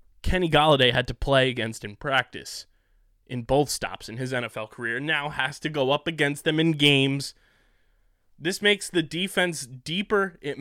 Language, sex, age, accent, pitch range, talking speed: English, male, 20-39, American, 115-160 Hz, 170 wpm